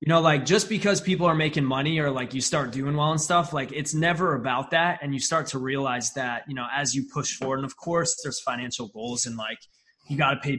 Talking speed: 260 wpm